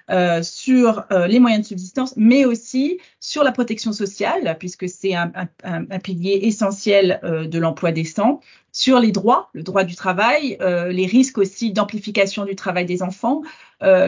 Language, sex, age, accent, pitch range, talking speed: French, female, 30-49, French, 185-225 Hz, 175 wpm